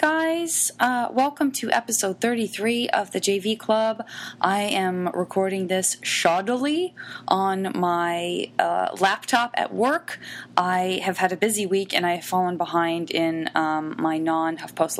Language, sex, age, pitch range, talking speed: English, female, 20-39, 170-200 Hz, 145 wpm